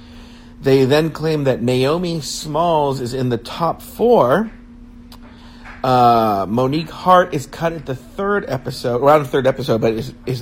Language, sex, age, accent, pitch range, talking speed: English, male, 50-69, American, 120-165 Hz, 155 wpm